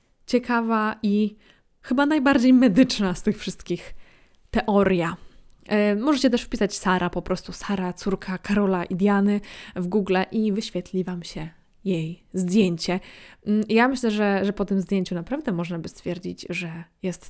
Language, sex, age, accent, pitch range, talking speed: Polish, female, 20-39, native, 180-215 Hz, 140 wpm